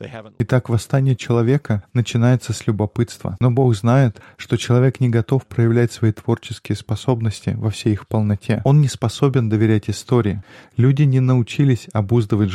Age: 20-39